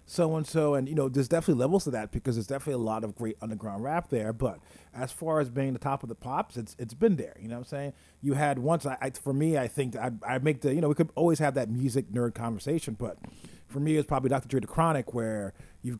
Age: 30-49